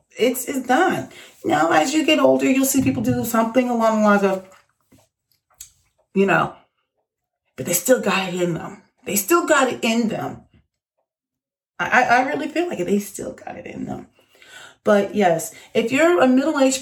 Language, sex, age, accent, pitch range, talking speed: English, female, 30-49, American, 185-255 Hz, 175 wpm